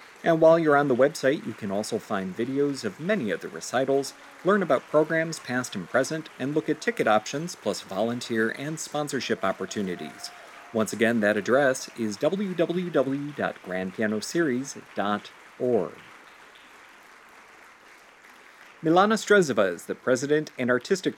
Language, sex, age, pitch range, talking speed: English, male, 40-59, 115-160 Hz, 125 wpm